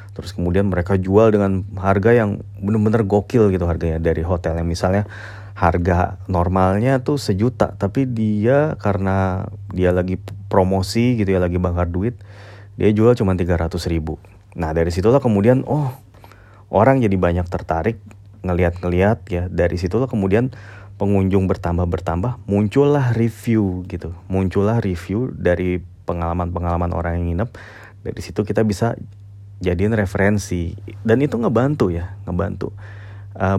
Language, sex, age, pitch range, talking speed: Indonesian, male, 30-49, 90-105 Hz, 130 wpm